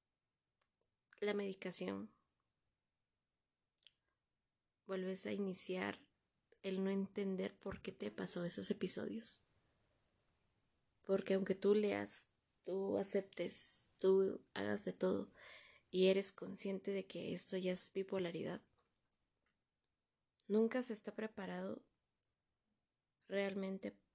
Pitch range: 180-205 Hz